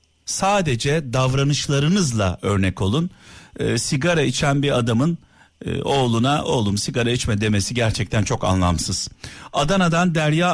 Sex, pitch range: male, 110-150 Hz